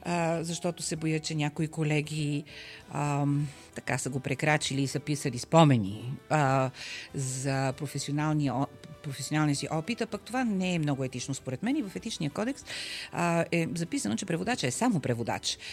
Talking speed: 160 wpm